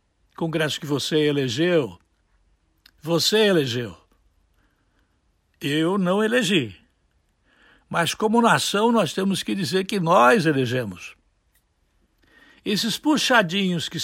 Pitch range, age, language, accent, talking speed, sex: 115-195 Hz, 60-79, Portuguese, Brazilian, 95 wpm, male